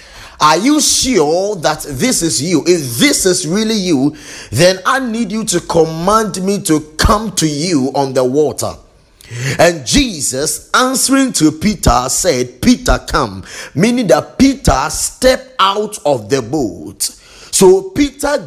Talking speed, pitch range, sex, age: 145 wpm, 130-195 Hz, male, 30-49